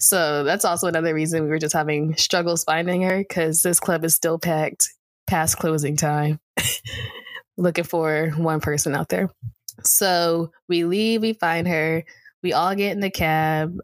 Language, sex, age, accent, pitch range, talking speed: English, female, 10-29, American, 155-175 Hz, 170 wpm